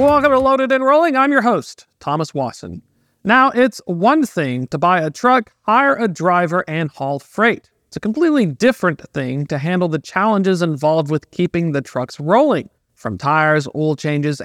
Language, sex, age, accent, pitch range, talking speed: English, male, 40-59, American, 150-230 Hz, 180 wpm